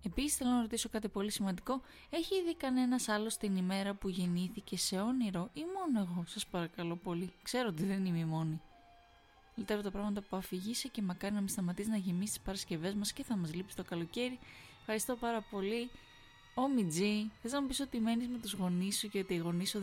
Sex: female